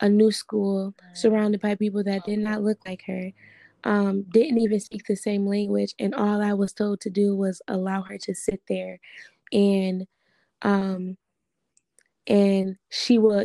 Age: 10-29